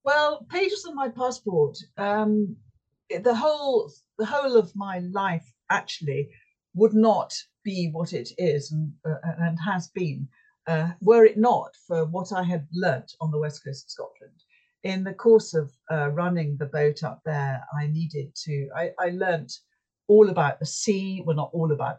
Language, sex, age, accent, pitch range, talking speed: English, female, 50-69, British, 155-210 Hz, 175 wpm